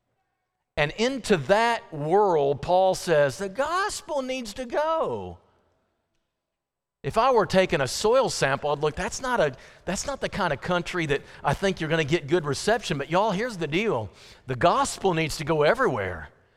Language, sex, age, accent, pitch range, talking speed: English, male, 50-69, American, 160-225 Hz, 180 wpm